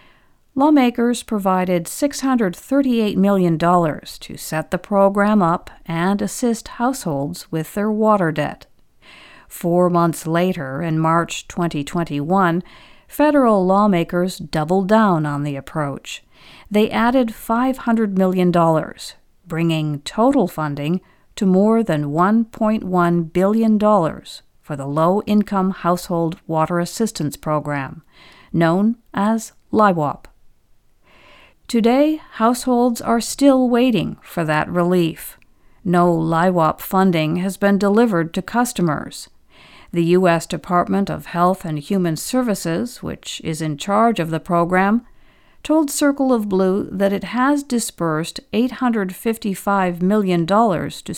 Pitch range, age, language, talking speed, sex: 170-225 Hz, 50-69, English, 110 wpm, female